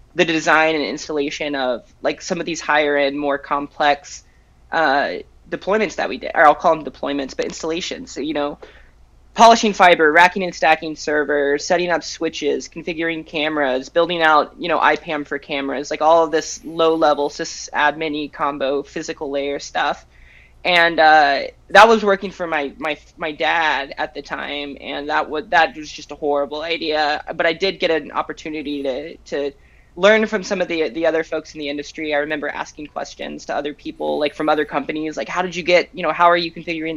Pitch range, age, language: 145-180 Hz, 20-39, English